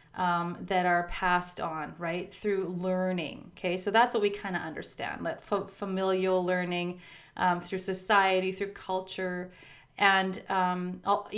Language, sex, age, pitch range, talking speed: English, female, 30-49, 175-195 Hz, 140 wpm